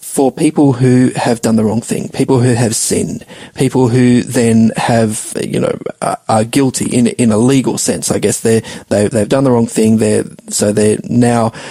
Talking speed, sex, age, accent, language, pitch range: 190 wpm, male, 30-49, Australian, English, 110-135 Hz